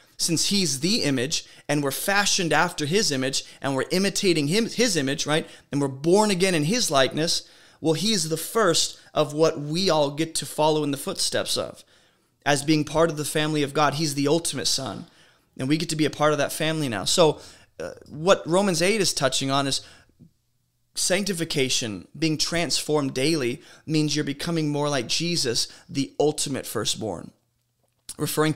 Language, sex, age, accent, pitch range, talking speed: English, male, 20-39, American, 115-155 Hz, 180 wpm